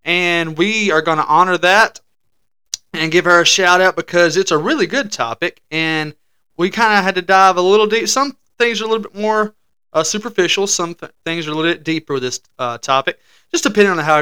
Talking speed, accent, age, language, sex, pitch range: 230 wpm, American, 30-49, English, male, 135-190 Hz